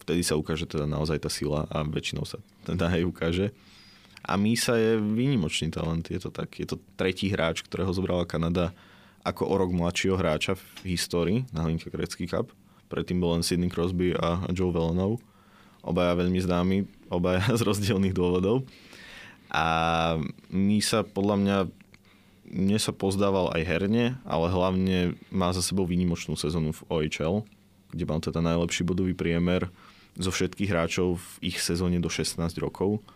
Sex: male